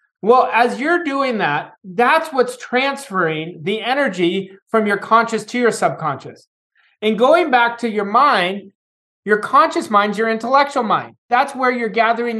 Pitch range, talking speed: 195-250 Hz, 160 wpm